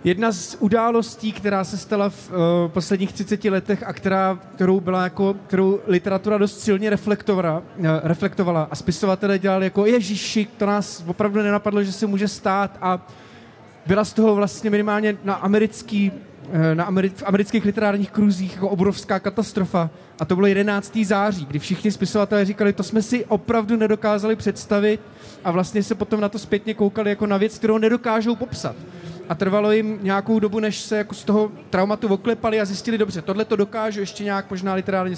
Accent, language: native, Czech